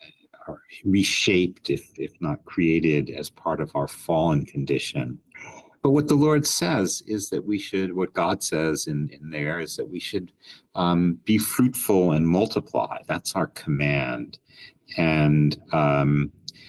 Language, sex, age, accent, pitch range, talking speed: English, male, 50-69, American, 80-125 Hz, 145 wpm